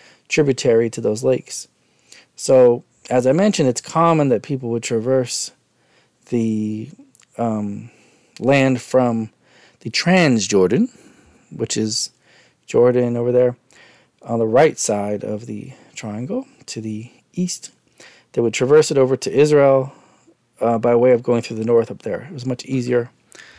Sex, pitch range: male, 115-150 Hz